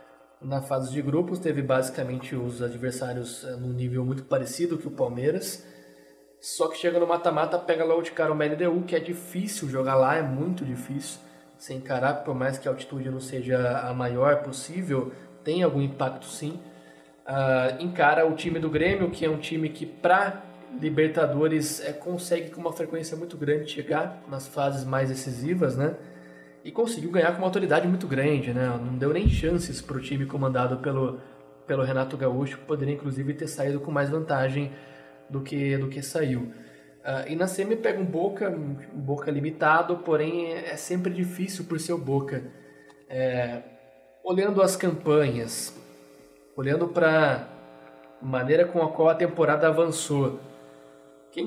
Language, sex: Portuguese, male